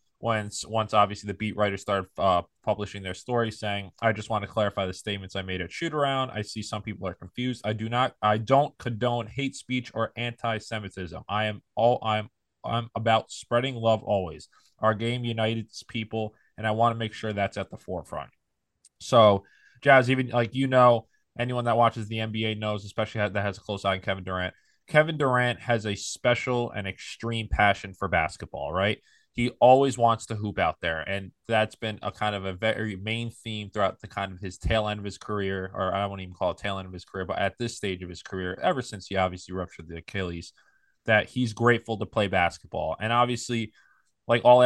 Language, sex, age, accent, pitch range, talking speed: English, male, 20-39, American, 100-115 Hz, 210 wpm